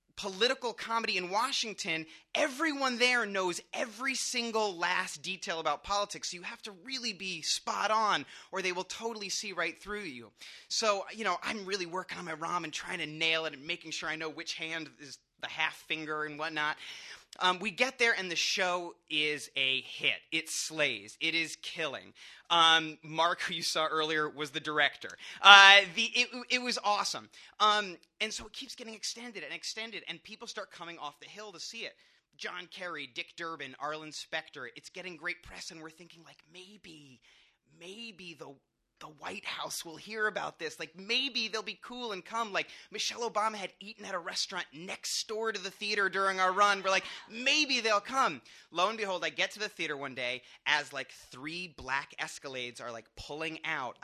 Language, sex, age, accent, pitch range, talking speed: English, male, 30-49, American, 155-210 Hz, 195 wpm